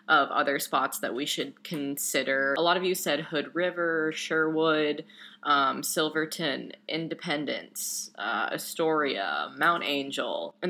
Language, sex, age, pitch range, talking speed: English, female, 20-39, 145-190 Hz, 130 wpm